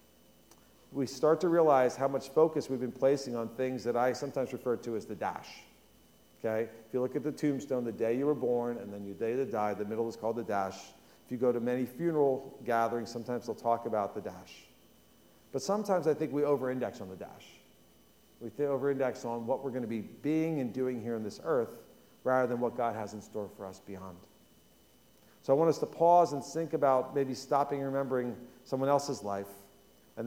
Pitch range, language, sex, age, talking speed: 115-145 Hz, English, male, 40-59, 215 wpm